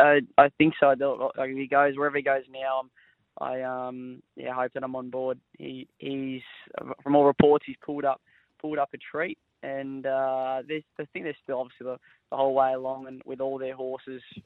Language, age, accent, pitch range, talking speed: English, 10-29, Australian, 130-135 Hz, 200 wpm